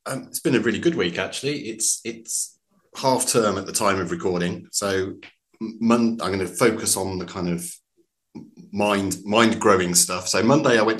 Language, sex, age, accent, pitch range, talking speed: English, male, 30-49, British, 95-115 Hz, 190 wpm